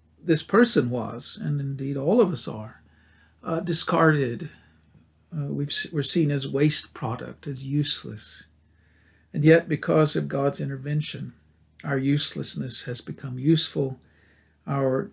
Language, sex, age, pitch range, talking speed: English, male, 50-69, 135-170 Hz, 125 wpm